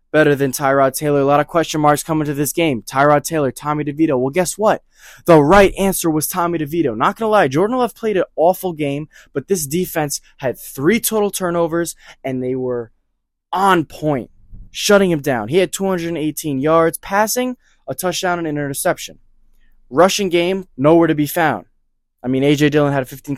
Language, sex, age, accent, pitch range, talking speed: English, male, 10-29, American, 135-185 Hz, 185 wpm